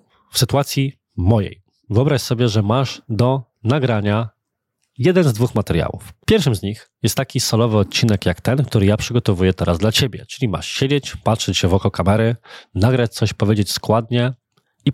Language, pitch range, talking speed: Polish, 105-130 Hz, 165 wpm